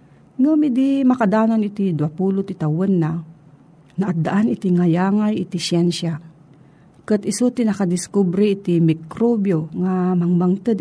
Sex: female